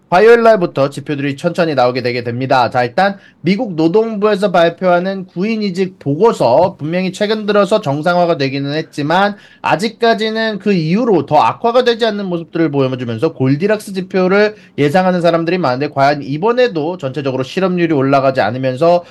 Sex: male